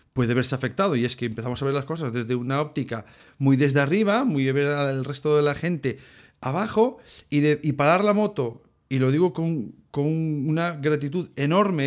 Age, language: 40-59, Spanish